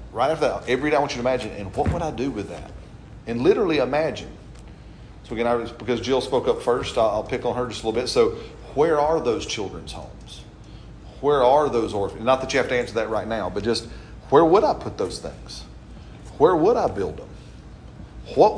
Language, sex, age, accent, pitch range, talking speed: English, male, 40-59, American, 120-190 Hz, 225 wpm